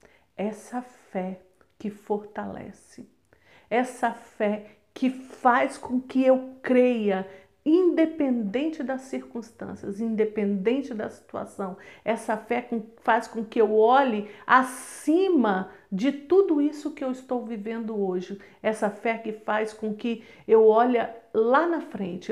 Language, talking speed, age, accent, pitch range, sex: Portuguese, 125 wpm, 50-69, Brazilian, 205-260 Hz, female